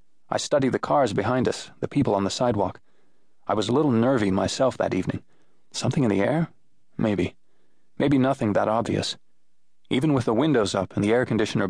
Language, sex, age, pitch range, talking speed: English, male, 30-49, 95-120 Hz, 190 wpm